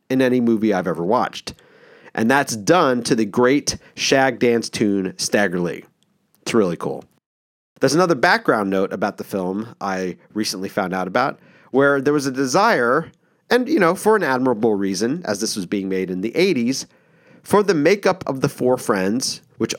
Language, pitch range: English, 110-150 Hz